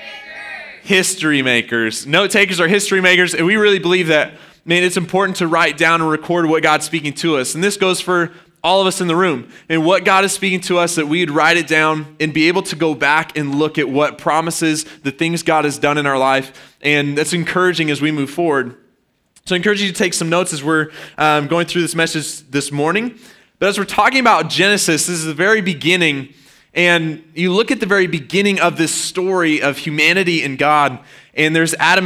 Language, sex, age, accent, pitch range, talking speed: English, male, 20-39, American, 155-185 Hz, 220 wpm